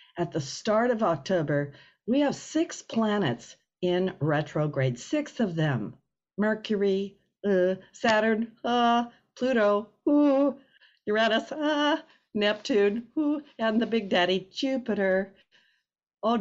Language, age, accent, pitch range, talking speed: English, 50-69, American, 145-205 Hz, 100 wpm